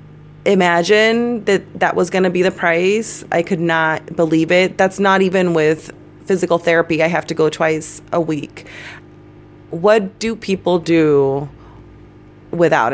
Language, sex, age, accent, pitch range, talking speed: English, female, 30-49, American, 150-180 Hz, 150 wpm